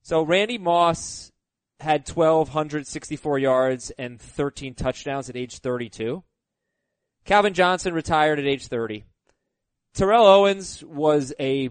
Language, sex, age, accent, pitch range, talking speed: English, male, 20-39, American, 130-190 Hz, 115 wpm